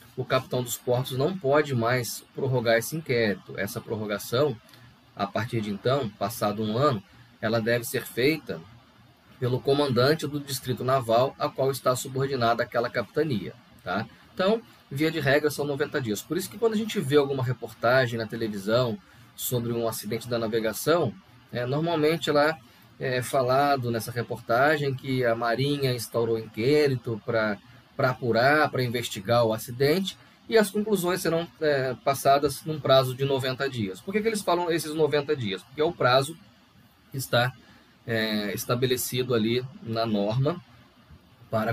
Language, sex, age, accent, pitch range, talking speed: Portuguese, male, 20-39, Brazilian, 115-145 Hz, 155 wpm